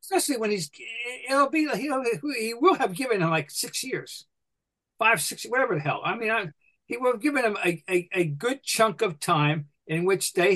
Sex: male